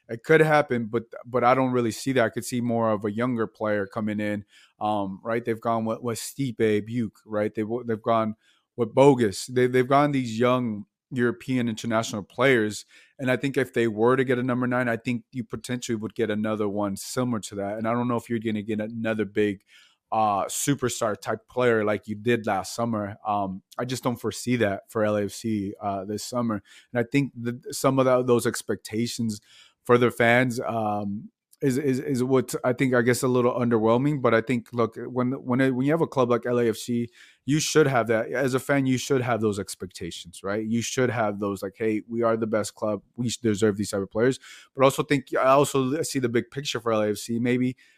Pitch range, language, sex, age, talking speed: 110-130 Hz, English, male, 30-49, 220 wpm